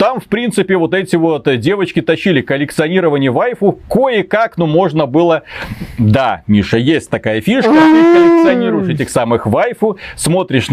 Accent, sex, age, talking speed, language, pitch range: native, male, 30-49, 140 wpm, Russian, 140-190 Hz